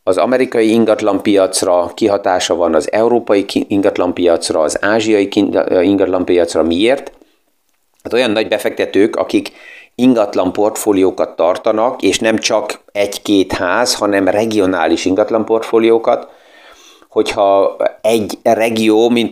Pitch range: 100-115 Hz